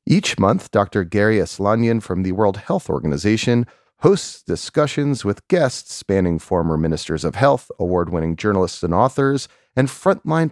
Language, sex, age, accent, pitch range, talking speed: English, male, 40-59, American, 95-125 Hz, 150 wpm